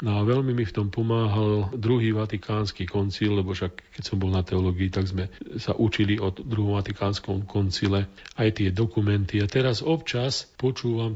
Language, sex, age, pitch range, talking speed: Slovak, male, 40-59, 100-115 Hz, 165 wpm